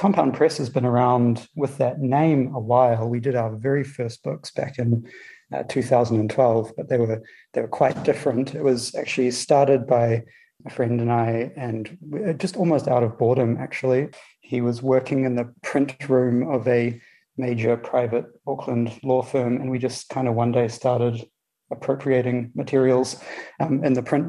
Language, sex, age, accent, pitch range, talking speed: English, male, 30-49, Australian, 120-135 Hz, 180 wpm